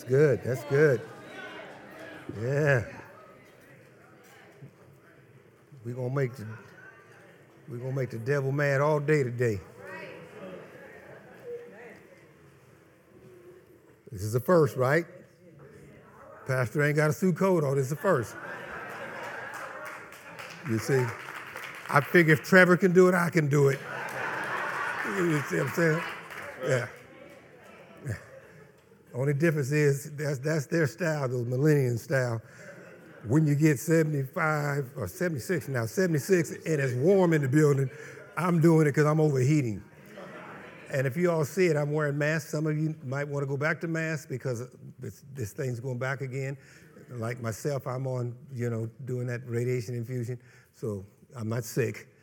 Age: 60-79